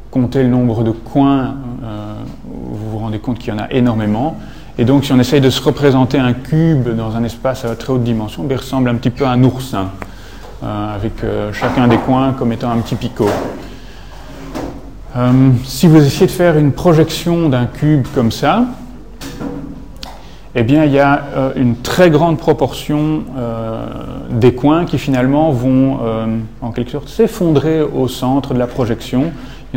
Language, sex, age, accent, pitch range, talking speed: French, male, 30-49, French, 115-135 Hz, 185 wpm